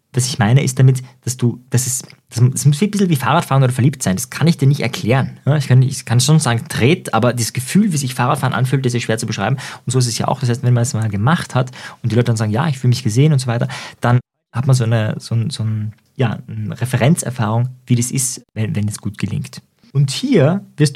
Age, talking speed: 20-39, 265 wpm